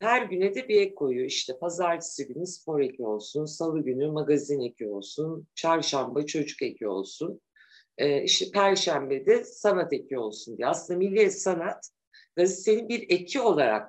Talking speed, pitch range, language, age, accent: 160 wpm, 140-195 Hz, Turkish, 50-69, native